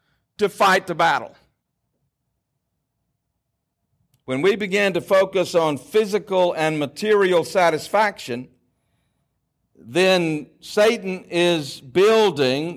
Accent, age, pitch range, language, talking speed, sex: American, 60-79, 145-200 Hz, English, 85 wpm, male